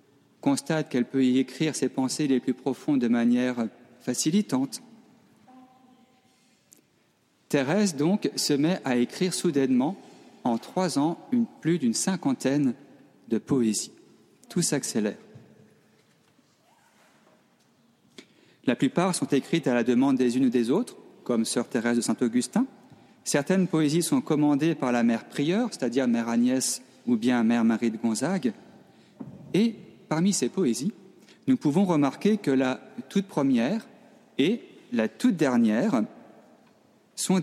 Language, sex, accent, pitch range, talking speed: French, male, French, 125-210 Hz, 130 wpm